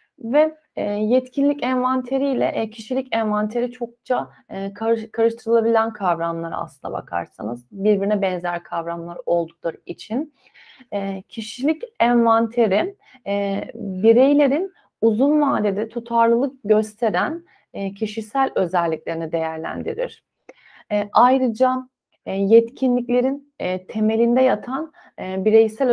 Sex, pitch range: female, 200-260 Hz